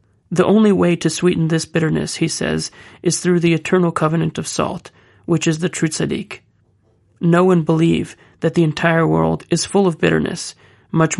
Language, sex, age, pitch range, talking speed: English, male, 30-49, 155-170 Hz, 170 wpm